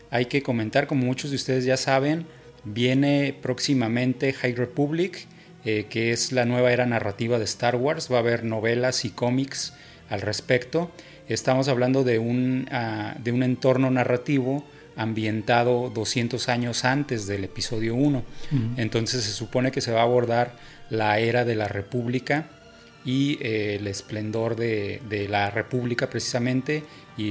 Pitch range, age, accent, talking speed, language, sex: 115-135 Hz, 30-49, Mexican, 155 wpm, Spanish, male